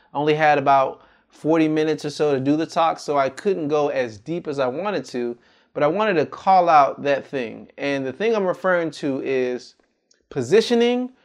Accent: American